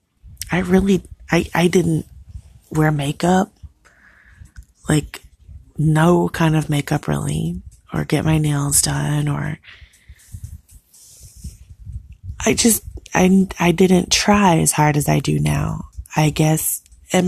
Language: English